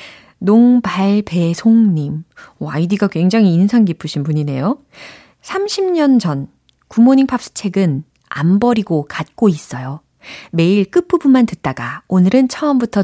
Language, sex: Korean, female